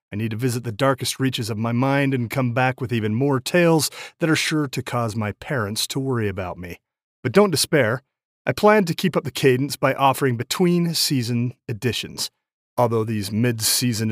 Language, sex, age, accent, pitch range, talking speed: English, male, 40-59, American, 115-150 Hz, 190 wpm